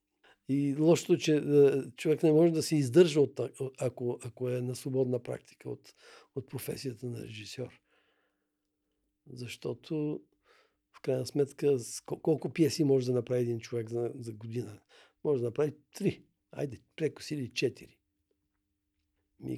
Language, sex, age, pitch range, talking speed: Bulgarian, male, 50-69, 125-150 Hz, 130 wpm